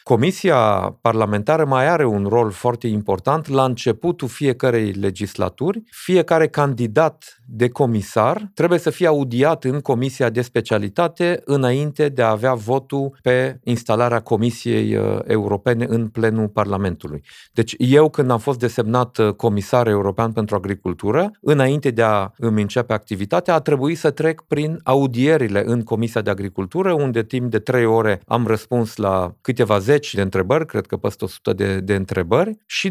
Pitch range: 110-145 Hz